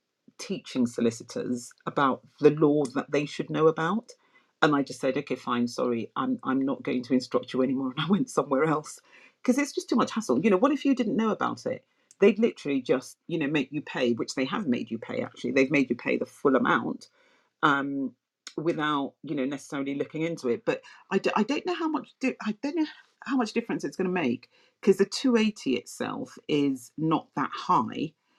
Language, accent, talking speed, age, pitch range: English, British, 210 wpm, 40-59, 140-230 Hz